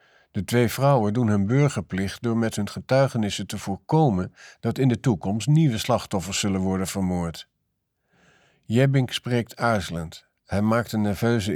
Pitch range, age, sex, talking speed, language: 100-130 Hz, 50-69, male, 145 wpm, Dutch